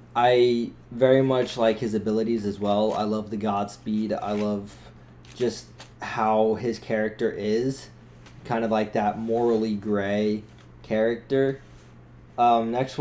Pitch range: 105-120 Hz